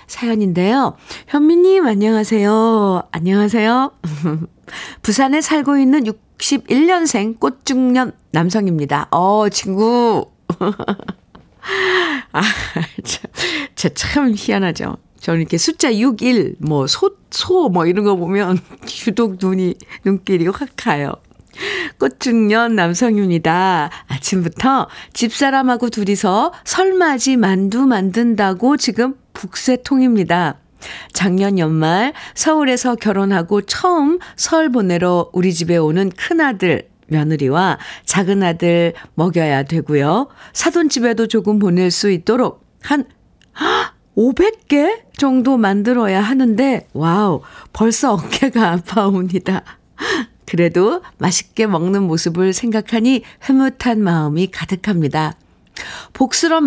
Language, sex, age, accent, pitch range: Korean, female, 50-69, native, 180-260 Hz